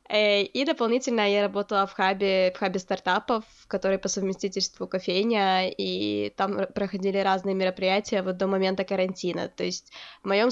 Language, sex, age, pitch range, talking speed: Ukrainian, female, 20-39, 195-240 Hz, 135 wpm